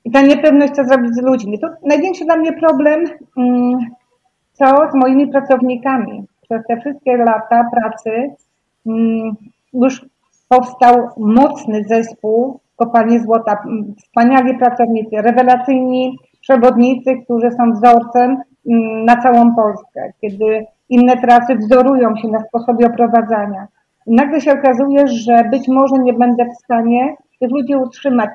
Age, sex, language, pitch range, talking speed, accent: 30-49, female, Polish, 225-255 Hz, 125 wpm, native